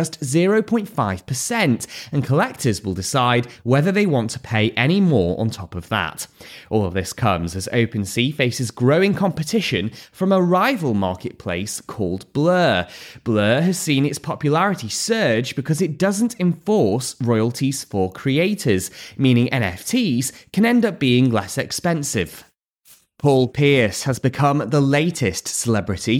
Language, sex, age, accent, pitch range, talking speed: English, male, 20-39, British, 110-165 Hz, 140 wpm